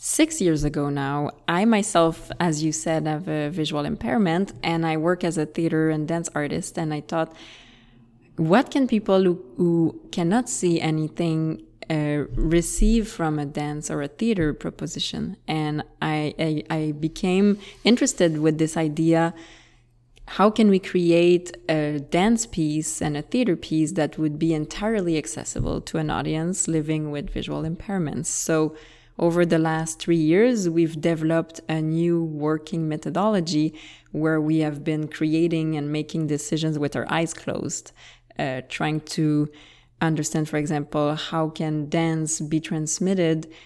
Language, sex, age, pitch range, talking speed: English, female, 20-39, 150-170 Hz, 150 wpm